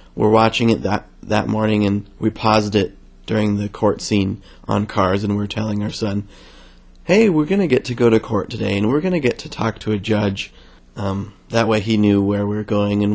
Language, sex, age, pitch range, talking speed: English, male, 30-49, 95-110 Hz, 235 wpm